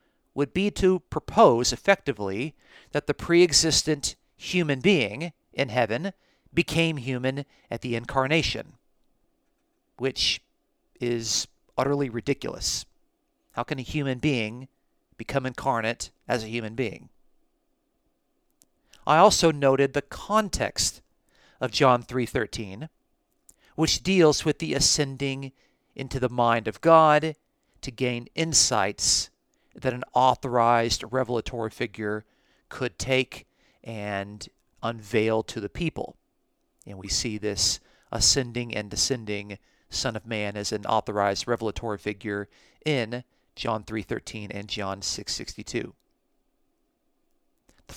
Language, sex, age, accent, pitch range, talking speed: English, male, 40-59, American, 110-145 Hz, 110 wpm